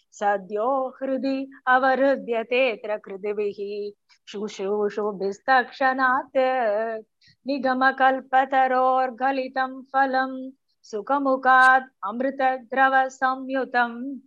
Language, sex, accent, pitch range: Tamil, female, native, 210-265 Hz